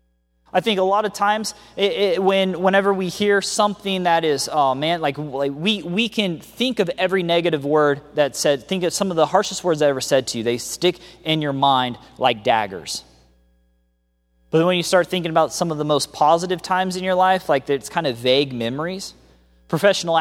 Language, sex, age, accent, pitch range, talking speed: English, male, 30-49, American, 130-180 Hz, 210 wpm